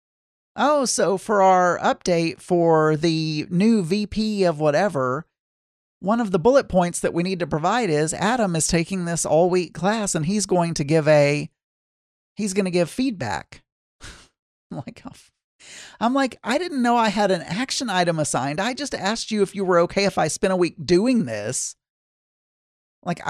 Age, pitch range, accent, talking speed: 50-69, 155-200 Hz, American, 180 wpm